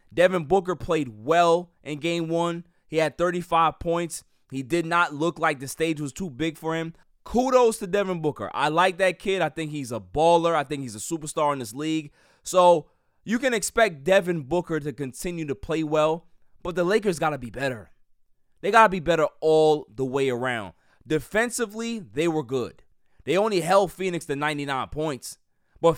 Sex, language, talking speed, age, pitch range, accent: male, English, 190 wpm, 20-39, 155-195 Hz, American